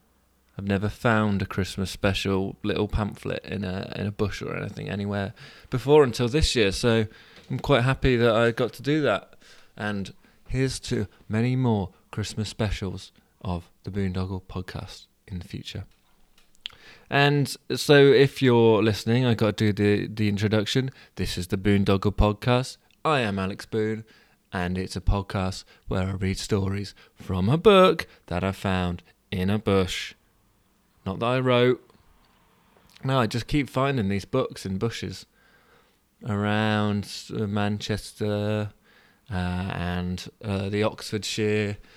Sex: male